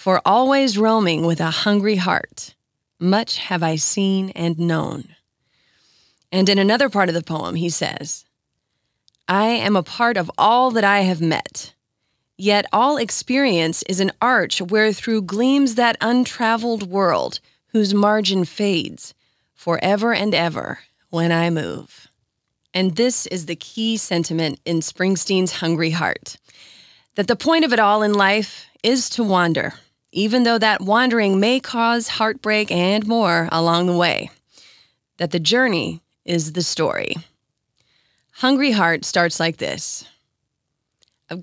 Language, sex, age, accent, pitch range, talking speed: English, female, 30-49, American, 170-225 Hz, 140 wpm